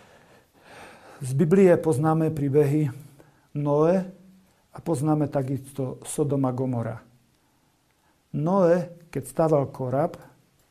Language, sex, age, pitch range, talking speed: Slovak, male, 50-69, 135-165 Hz, 80 wpm